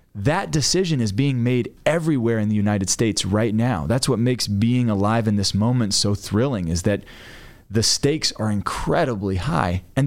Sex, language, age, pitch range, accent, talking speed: male, English, 30-49, 95-115 Hz, American, 180 wpm